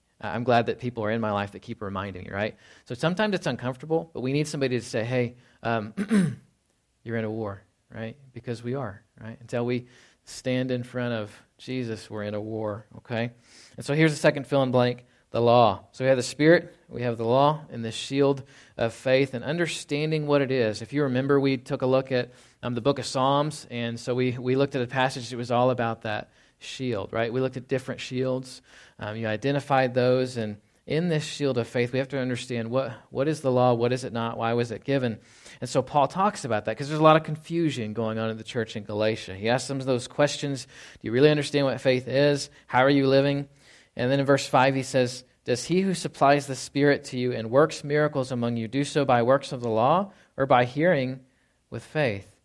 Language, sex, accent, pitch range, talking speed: English, male, American, 115-140 Hz, 230 wpm